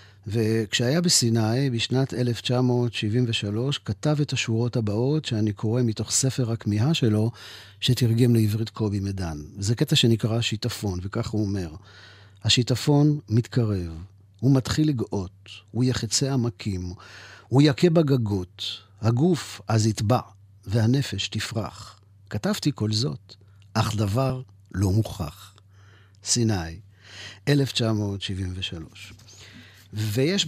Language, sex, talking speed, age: Hebrew, male, 100 wpm, 50-69